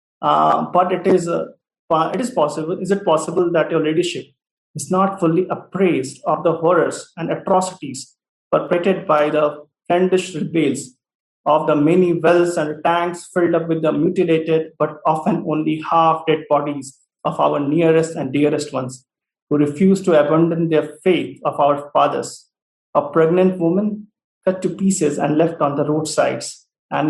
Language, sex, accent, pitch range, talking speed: English, male, Indian, 150-185 Hz, 160 wpm